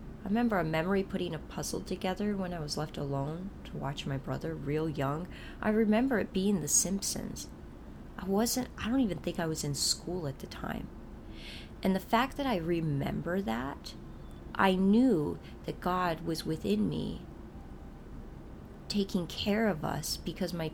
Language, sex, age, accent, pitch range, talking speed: English, female, 30-49, American, 160-205 Hz, 170 wpm